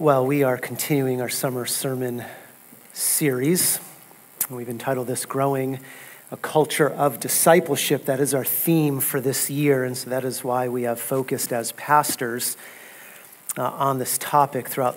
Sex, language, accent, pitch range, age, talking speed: male, English, American, 135-170 Hz, 40-59, 150 wpm